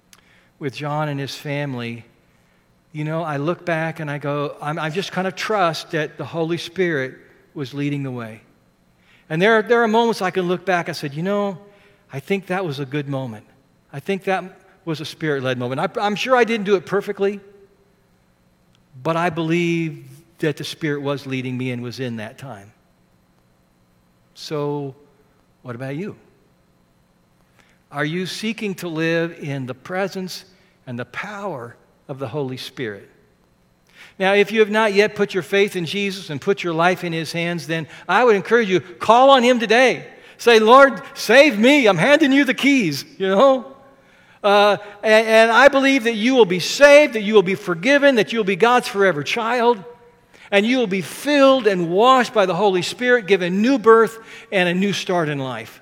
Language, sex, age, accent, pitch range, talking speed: English, male, 50-69, American, 140-205 Hz, 185 wpm